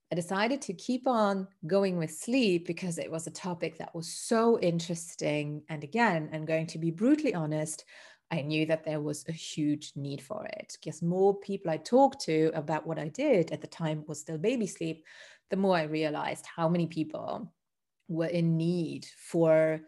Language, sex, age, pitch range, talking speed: English, female, 30-49, 160-205 Hz, 190 wpm